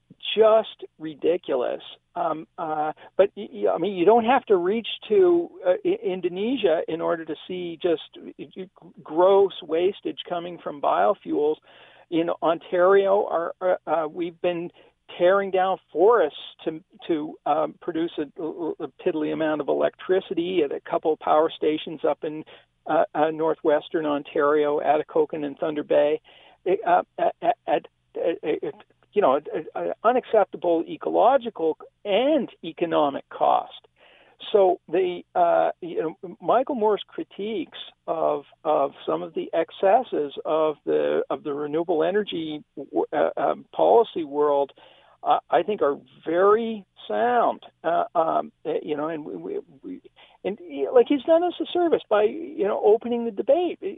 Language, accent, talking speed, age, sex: English, American, 140 wpm, 50-69, male